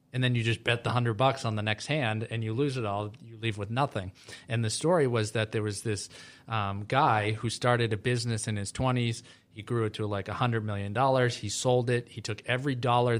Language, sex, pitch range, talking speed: English, male, 110-125 Hz, 245 wpm